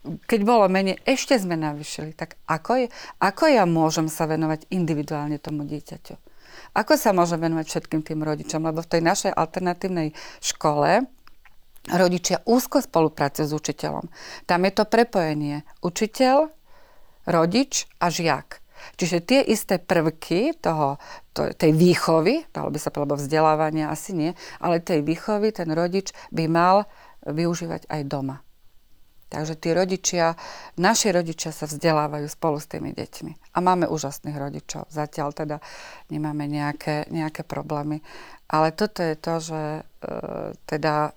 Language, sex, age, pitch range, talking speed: Slovak, female, 40-59, 155-185 Hz, 140 wpm